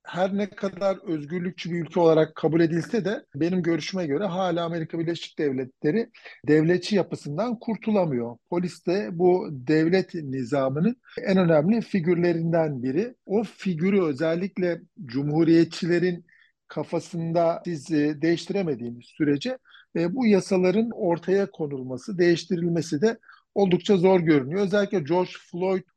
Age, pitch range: 50-69, 150-185 Hz